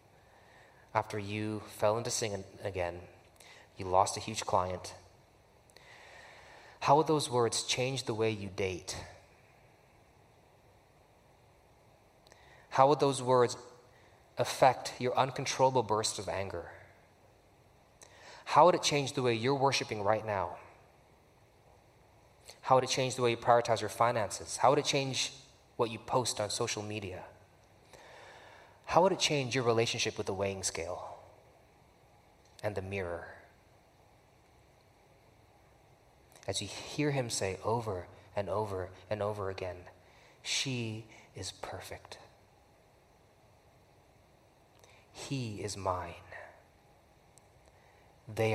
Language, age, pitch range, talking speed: English, 20-39, 100-120 Hz, 110 wpm